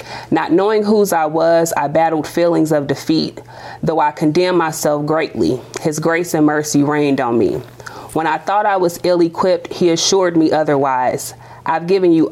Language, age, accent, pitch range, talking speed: English, 30-49, American, 145-170 Hz, 175 wpm